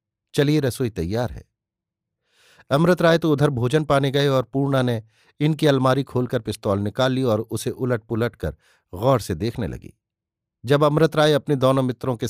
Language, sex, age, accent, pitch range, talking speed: Hindi, male, 50-69, native, 110-140 Hz, 175 wpm